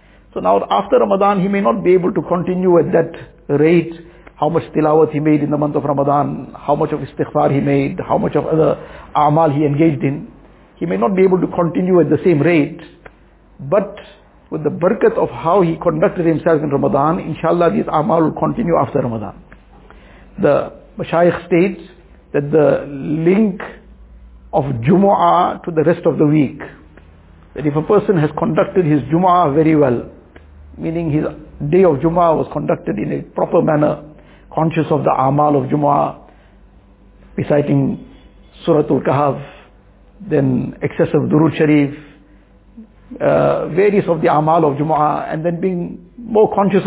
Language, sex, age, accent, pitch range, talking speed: English, male, 60-79, Indian, 150-180 Hz, 165 wpm